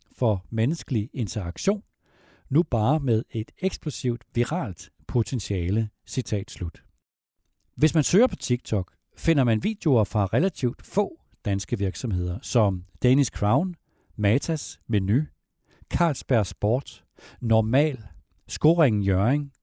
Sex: male